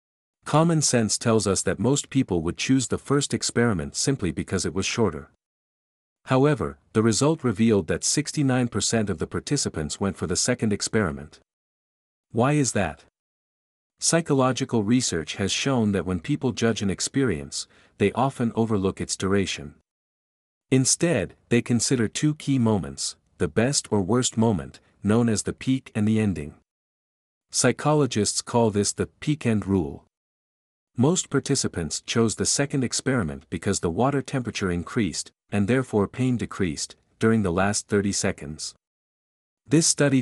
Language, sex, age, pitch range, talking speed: English, male, 50-69, 85-130 Hz, 140 wpm